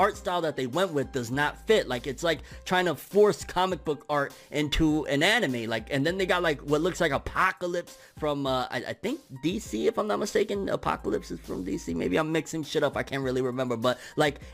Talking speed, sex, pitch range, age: 230 wpm, male, 125-165 Hz, 20-39